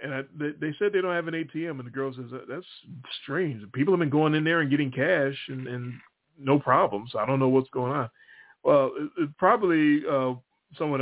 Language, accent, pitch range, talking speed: English, American, 120-155 Hz, 220 wpm